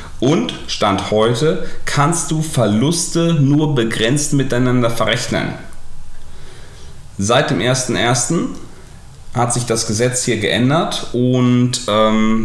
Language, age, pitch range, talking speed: German, 40-59, 105-140 Hz, 100 wpm